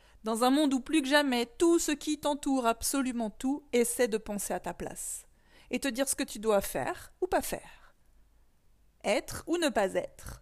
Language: French